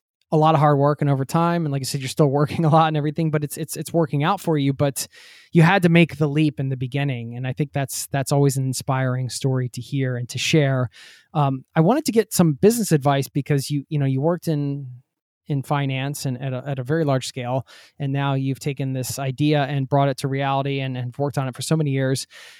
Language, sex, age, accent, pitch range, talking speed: English, male, 20-39, American, 135-160 Hz, 255 wpm